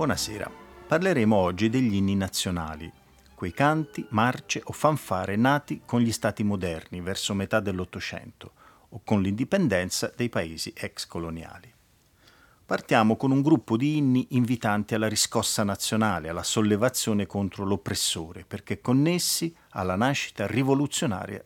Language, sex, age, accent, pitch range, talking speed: Italian, male, 40-59, native, 100-130 Hz, 125 wpm